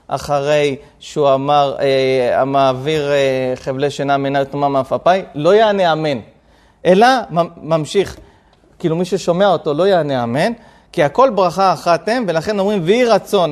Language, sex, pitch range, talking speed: Hebrew, male, 160-220 Hz, 145 wpm